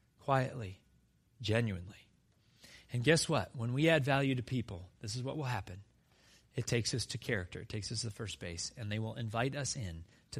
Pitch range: 105-135 Hz